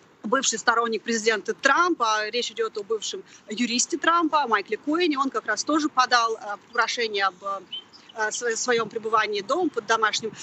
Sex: female